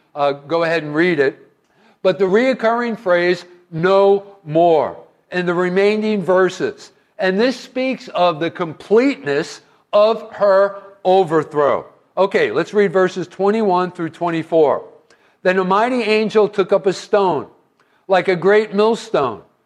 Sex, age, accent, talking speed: male, 50-69, American, 135 wpm